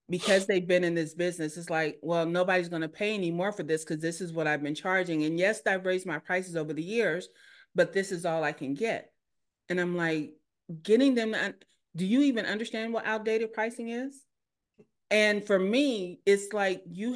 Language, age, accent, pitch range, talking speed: English, 30-49, American, 175-220 Hz, 205 wpm